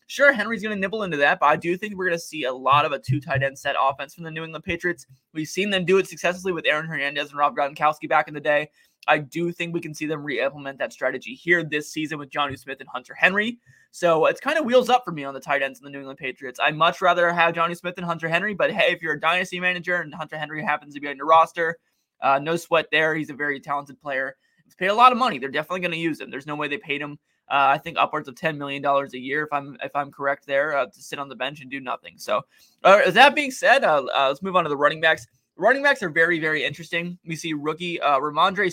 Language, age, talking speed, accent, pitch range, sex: English, 20-39, 280 wpm, American, 145-175 Hz, male